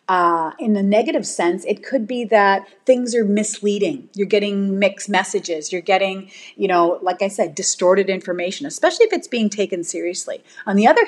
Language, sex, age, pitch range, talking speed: English, female, 30-49, 190-225 Hz, 185 wpm